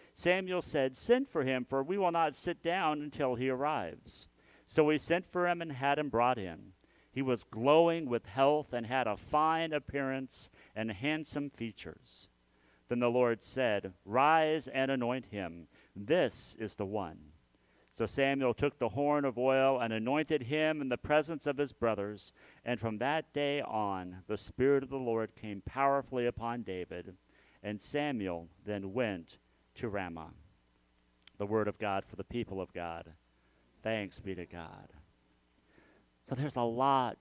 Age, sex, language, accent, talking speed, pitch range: 50-69, male, English, American, 165 wpm, 100-145 Hz